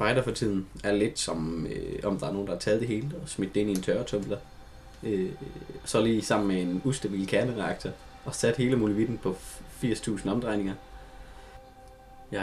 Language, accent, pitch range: Danish, native, 100-130 Hz